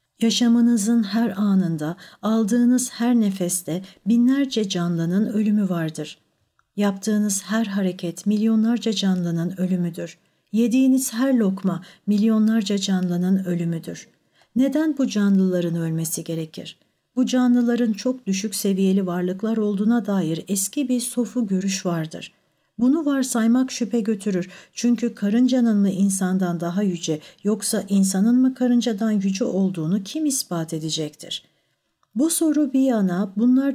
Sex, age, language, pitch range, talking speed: female, 60-79, Turkish, 180-240 Hz, 115 wpm